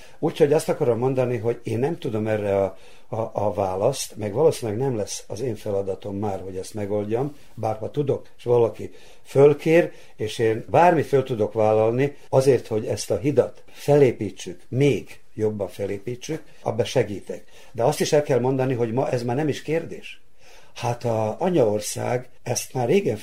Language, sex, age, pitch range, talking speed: Hungarian, male, 60-79, 110-140 Hz, 170 wpm